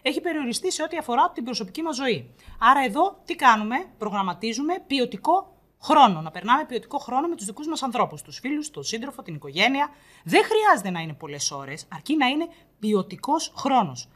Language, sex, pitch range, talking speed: Greek, female, 170-270 Hz, 180 wpm